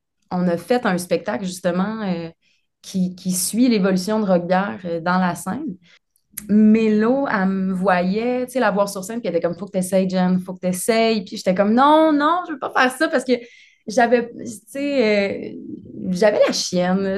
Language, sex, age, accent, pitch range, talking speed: French, female, 20-39, Canadian, 185-220 Hz, 195 wpm